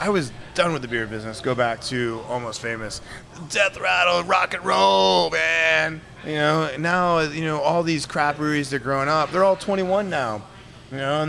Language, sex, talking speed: English, male, 195 wpm